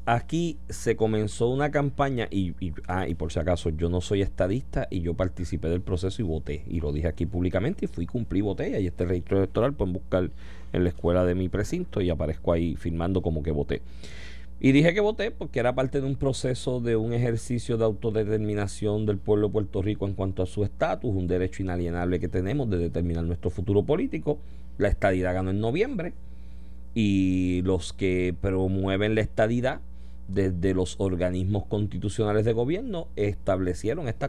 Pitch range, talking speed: 85-115 Hz, 185 wpm